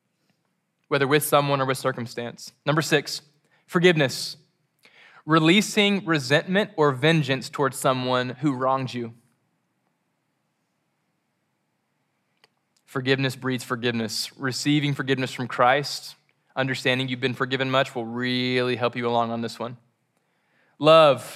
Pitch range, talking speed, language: 125-160 Hz, 110 wpm, English